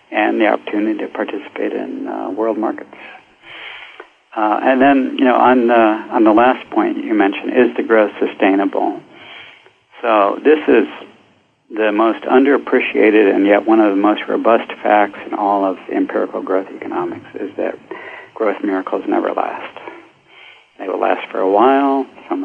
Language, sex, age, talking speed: English, male, 60-79, 160 wpm